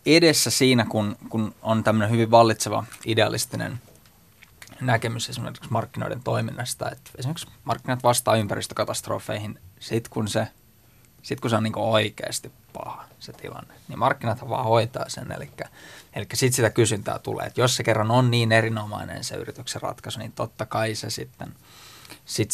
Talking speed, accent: 150 wpm, native